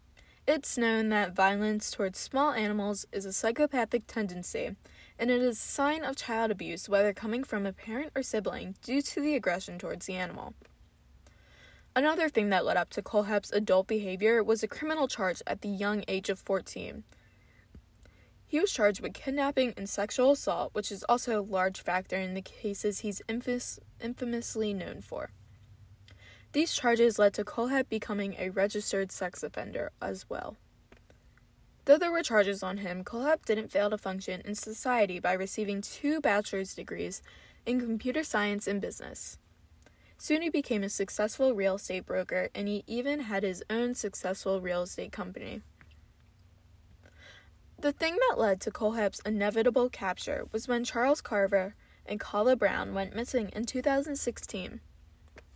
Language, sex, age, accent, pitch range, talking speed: English, female, 10-29, American, 185-245 Hz, 155 wpm